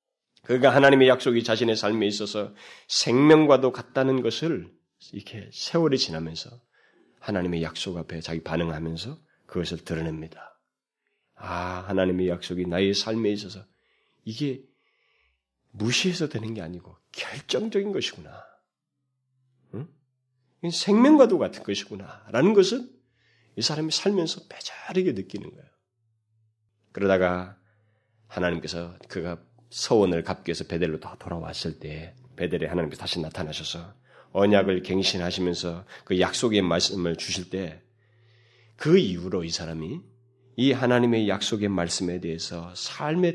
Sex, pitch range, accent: male, 90-145 Hz, native